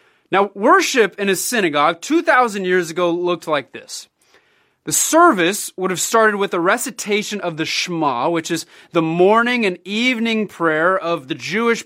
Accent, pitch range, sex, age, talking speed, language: American, 170-240 Hz, male, 30-49, 160 wpm, English